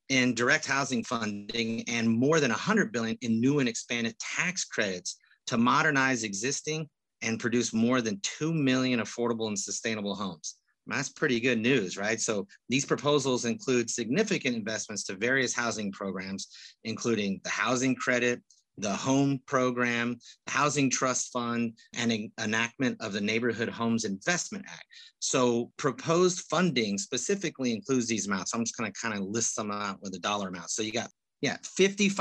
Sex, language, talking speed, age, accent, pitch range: male, English, 160 wpm, 30-49, American, 115-140 Hz